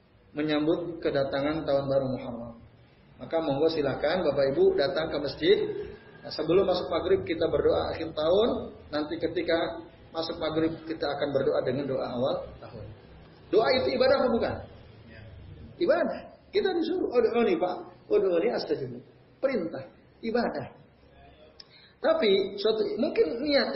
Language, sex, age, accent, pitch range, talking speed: Indonesian, male, 30-49, native, 125-205 Hz, 125 wpm